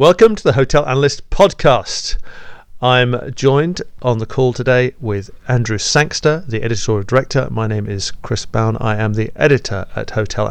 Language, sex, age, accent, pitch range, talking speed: English, male, 40-59, British, 115-135 Hz, 165 wpm